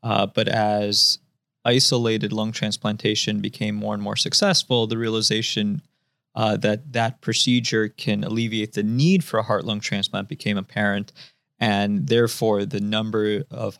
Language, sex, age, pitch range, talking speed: English, male, 20-39, 105-135 Hz, 140 wpm